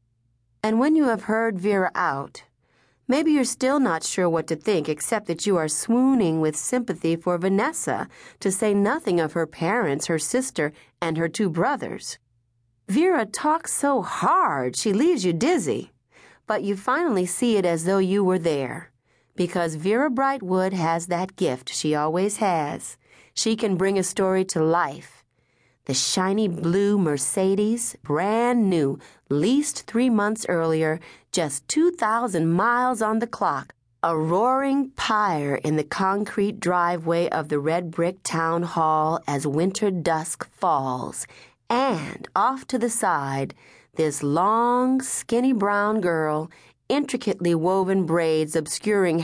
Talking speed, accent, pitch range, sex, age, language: 145 wpm, American, 160-220 Hz, female, 40-59, English